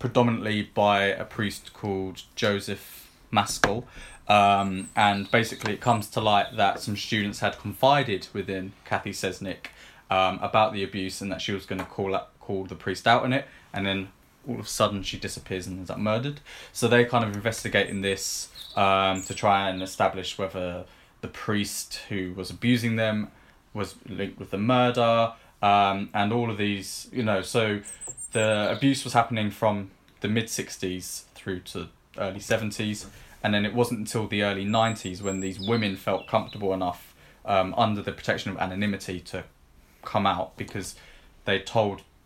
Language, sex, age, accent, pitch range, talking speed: English, male, 20-39, British, 95-115 Hz, 170 wpm